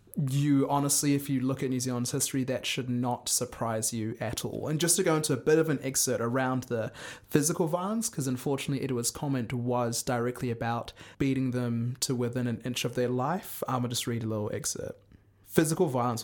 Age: 20-39